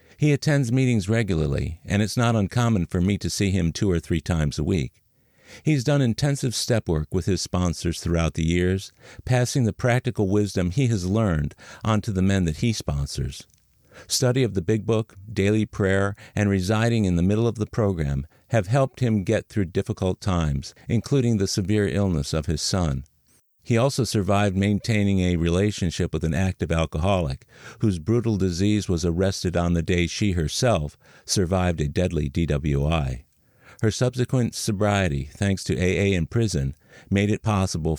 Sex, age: male, 50-69